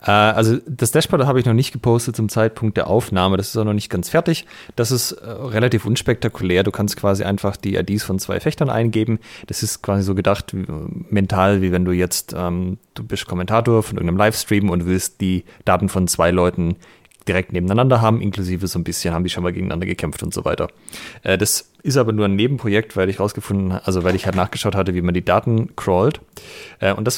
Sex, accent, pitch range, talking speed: male, German, 95-115 Hz, 210 wpm